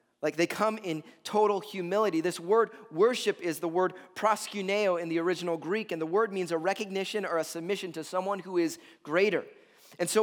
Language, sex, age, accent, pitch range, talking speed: English, male, 30-49, American, 175-245 Hz, 195 wpm